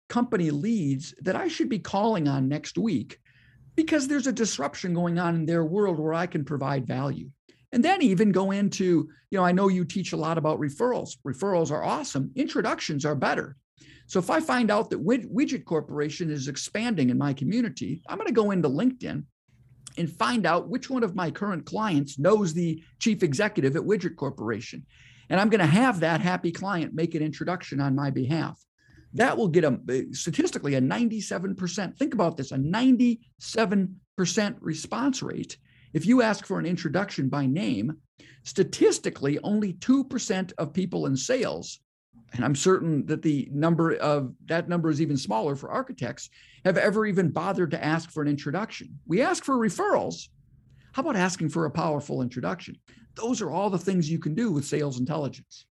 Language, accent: English, American